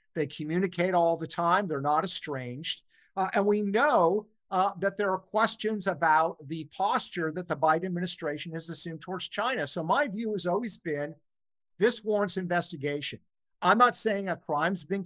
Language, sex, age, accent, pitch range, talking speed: English, male, 50-69, American, 155-200 Hz, 170 wpm